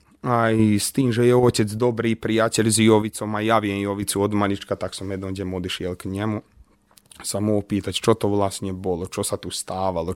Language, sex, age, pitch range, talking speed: Slovak, male, 20-39, 100-115 Hz, 195 wpm